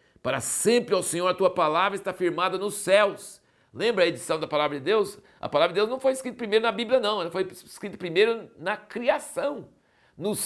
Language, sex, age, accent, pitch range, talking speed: Portuguese, male, 60-79, Brazilian, 140-210 Hz, 205 wpm